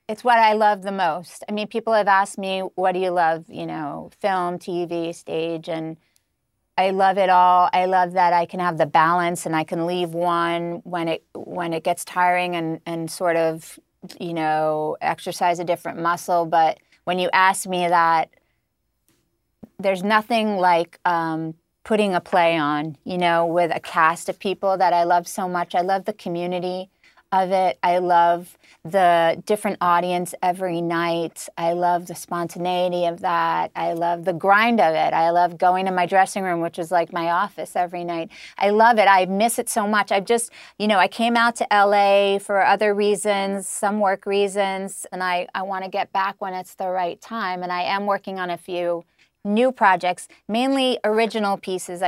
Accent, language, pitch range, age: American, English, 170-200 Hz, 30-49